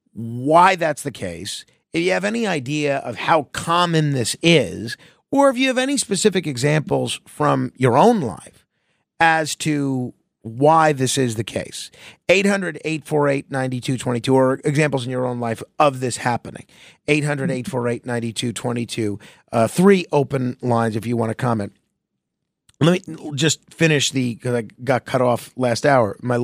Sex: male